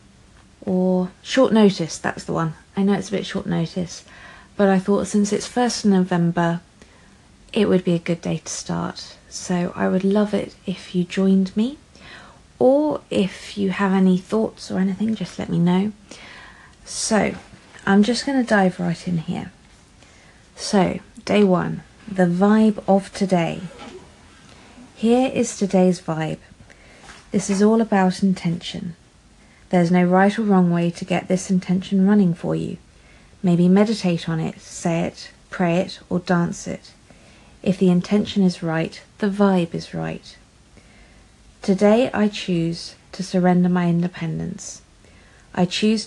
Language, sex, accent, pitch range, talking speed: English, female, British, 170-200 Hz, 150 wpm